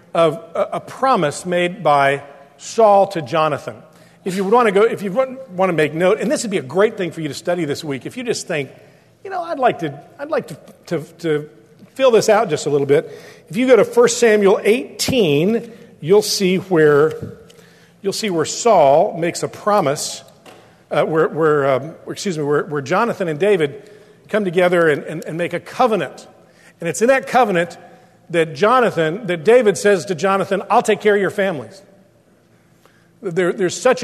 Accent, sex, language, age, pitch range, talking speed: American, male, English, 50-69, 160-215 Hz, 195 wpm